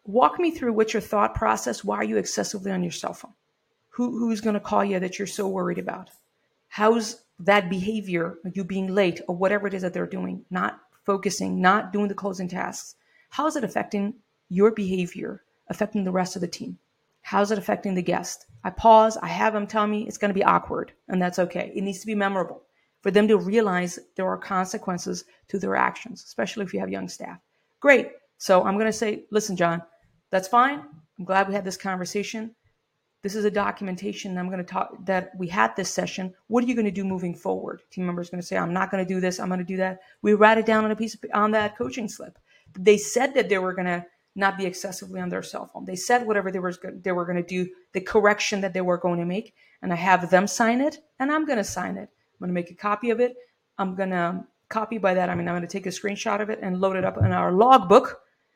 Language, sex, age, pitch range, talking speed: English, female, 40-59, 185-215 Hz, 240 wpm